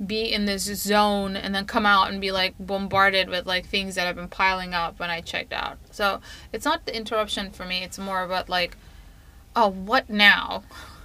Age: 20-39